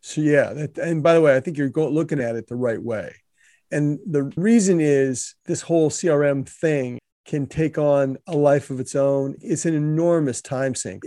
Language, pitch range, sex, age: English, 140-170 Hz, male, 40-59